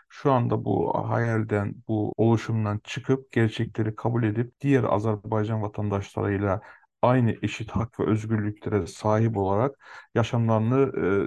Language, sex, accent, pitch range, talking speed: Turkish, male, native, 105-125 Hz, 115 wpm